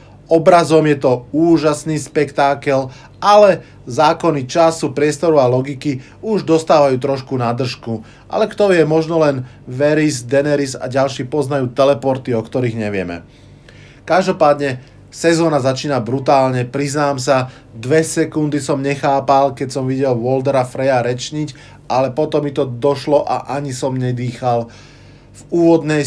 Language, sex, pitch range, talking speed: Slovak, male, 125-150 Hz, 130 wpm